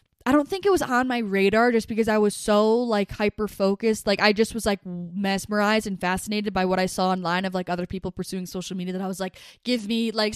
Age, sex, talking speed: 10-29, female, 250 wpm